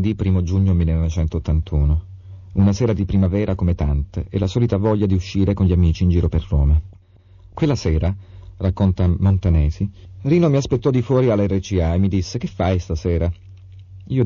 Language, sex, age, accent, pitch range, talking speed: Italian, male, 40-59, native, 90-105 Hz, 170 wpm